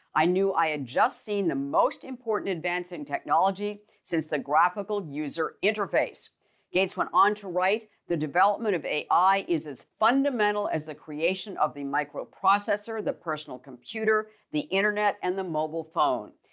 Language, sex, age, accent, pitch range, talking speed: English, female, 50-69, American, 155-205 Hz, 160 wpm